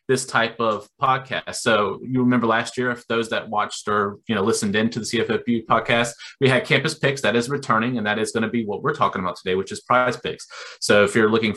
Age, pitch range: 30-49, 110-130 Hz